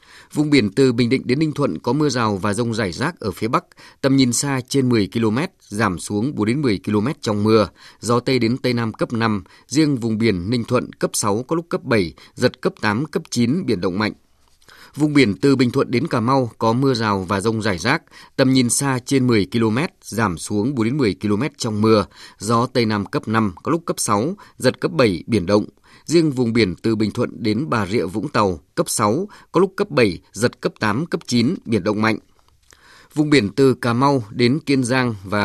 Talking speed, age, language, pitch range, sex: 230 wpm, 20-39, Vietnamese, 105-135 Hz, male